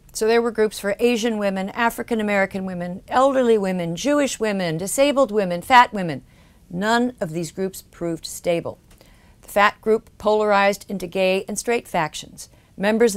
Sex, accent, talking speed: female, American, 155 wpm